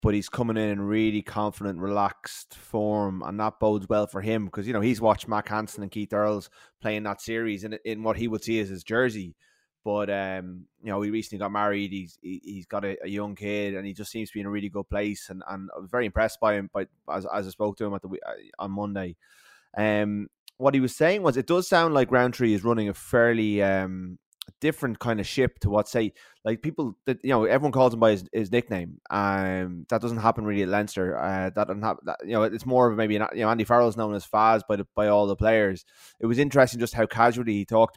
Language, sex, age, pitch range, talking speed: English, male, 20-39, 100-115 Hz, 250 wpm